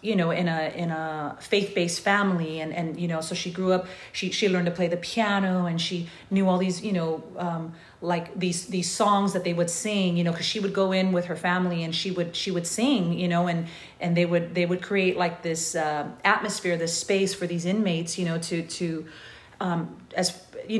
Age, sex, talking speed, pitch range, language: 40-59, female, 230 wpm, 165-190 Hz, English